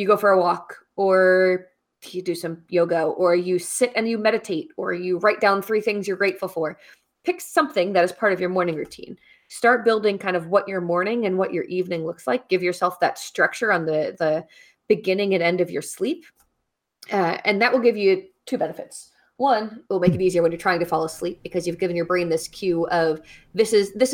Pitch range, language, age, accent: 175-210 Hz, English, 20-39, American